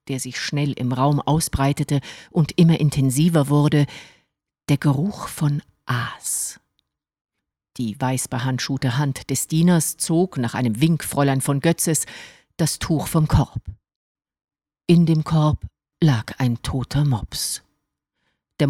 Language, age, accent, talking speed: German, 50-69, German, 120 wpm